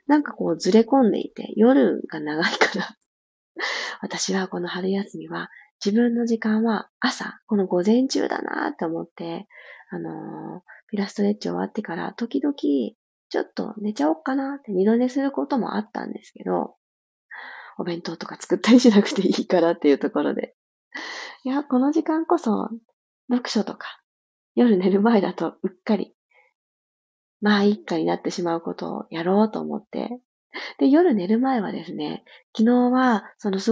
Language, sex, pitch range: Japanese, female, 185-250 Hz